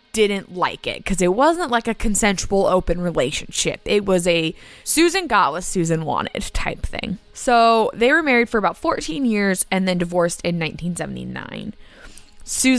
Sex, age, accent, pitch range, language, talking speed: female, 20-39, American, 180-235 Hz, English, 160 wpm